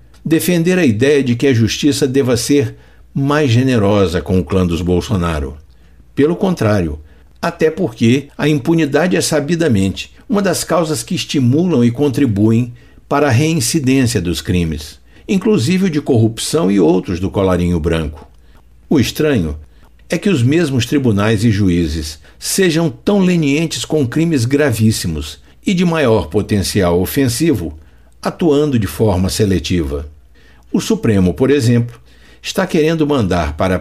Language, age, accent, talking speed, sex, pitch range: Portuguese, 60-79, Brazilian, 140 wpm, male, 85-145 Hz